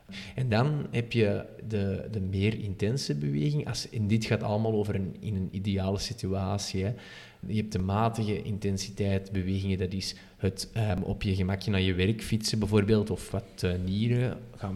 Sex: male